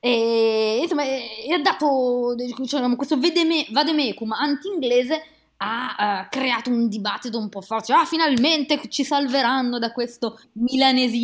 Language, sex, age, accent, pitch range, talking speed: Italian, female, 20-39, native, 200-275 Hz, 130 wpm